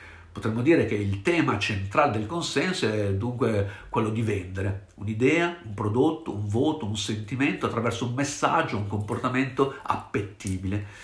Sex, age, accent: male, 50-69, native